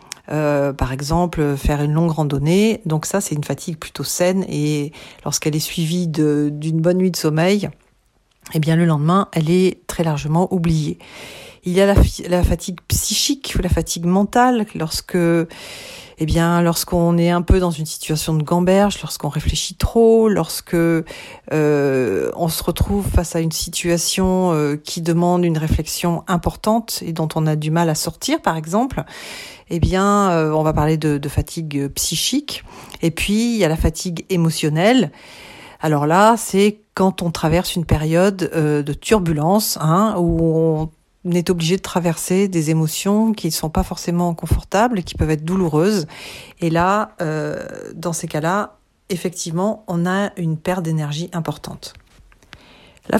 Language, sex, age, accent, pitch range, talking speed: French, female, 40-59, French, 160-190 Hz, 160 wpm